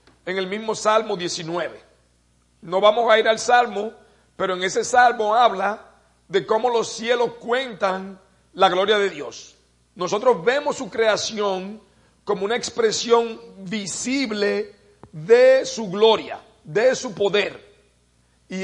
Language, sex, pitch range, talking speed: English, male, 190-235 Hz, 130 wpm